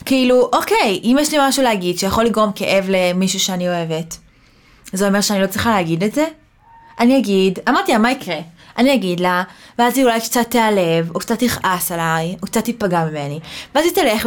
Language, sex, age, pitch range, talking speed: Hebrew, female, 20-39, 190-240 Hz, 195 wpm